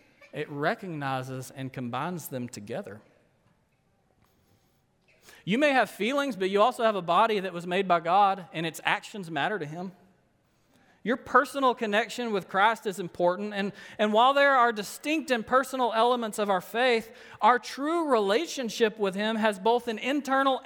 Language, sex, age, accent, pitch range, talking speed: English, male, 40-59, American, 190-250 Hz, 160 wpm